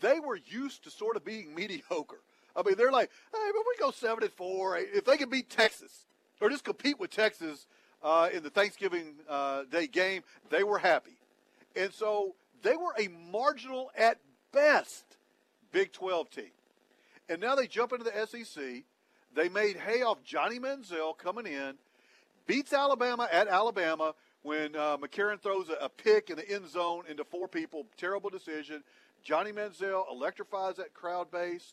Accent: American